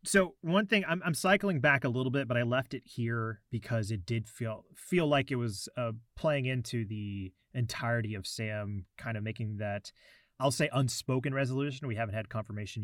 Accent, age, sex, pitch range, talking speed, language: American, 30-49, male, 110-135 Hz, 195 wpm, English